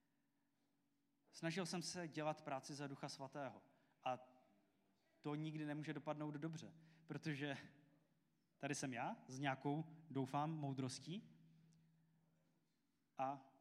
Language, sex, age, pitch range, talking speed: Czech, male, 20-39, 135-165 Hz, 100 wpm